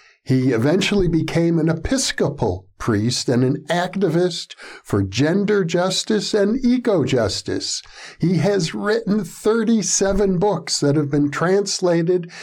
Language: English